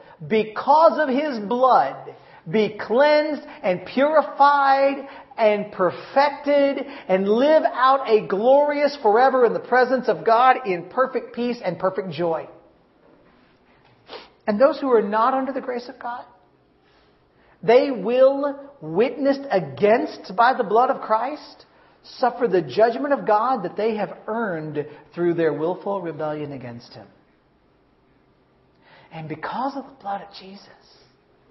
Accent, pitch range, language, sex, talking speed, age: American, 170-265 Hz, English, male, 130 wpm, 40-59